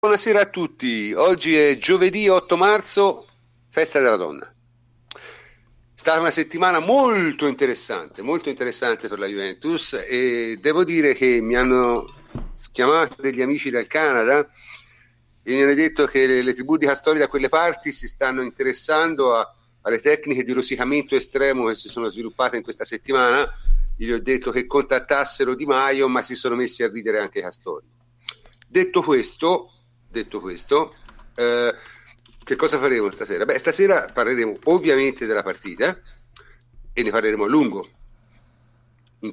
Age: 50-69